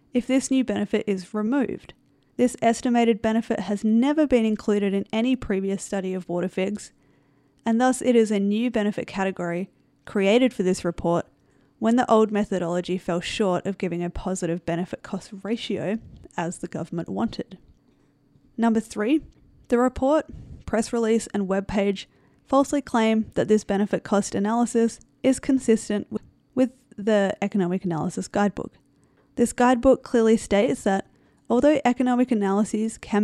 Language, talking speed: English, 140 wpm